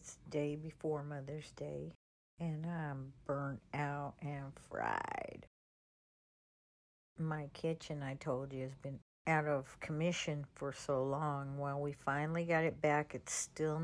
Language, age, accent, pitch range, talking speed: English, 60-79, American, 130-155 Hz, 140 wpm